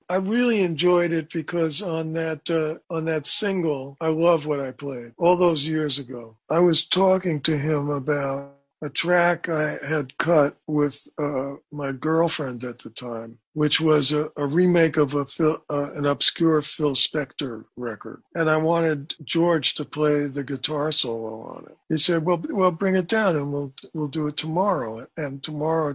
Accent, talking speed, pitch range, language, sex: American, 180 wpm, 145-175 Hz, English, male